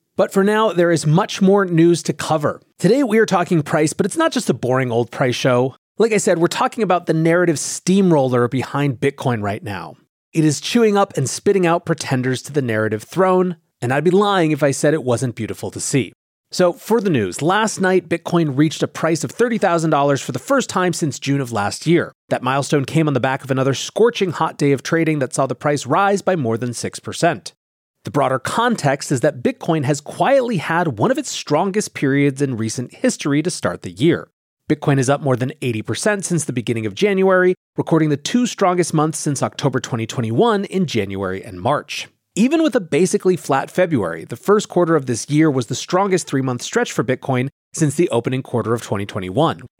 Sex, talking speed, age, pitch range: male, 210 wpm, 30-49, 130-185 Hz